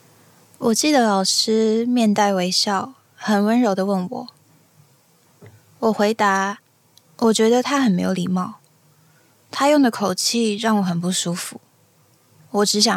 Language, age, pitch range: Chinese, 20-39, 170-225 Hz